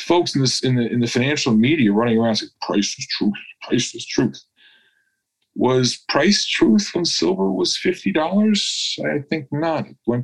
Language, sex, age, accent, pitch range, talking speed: English, male, 40-59, American, 115-165 Hz, 175 wpm